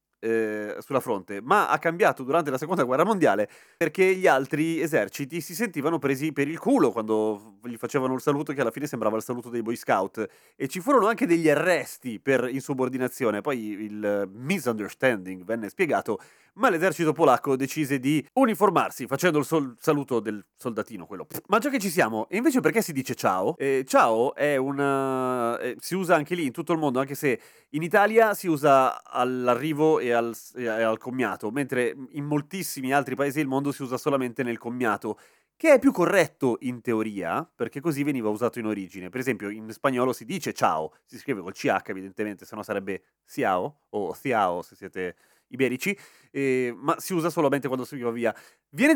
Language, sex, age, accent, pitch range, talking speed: Italian, male, 30-49, native, 120-170 Hz, 185 wpm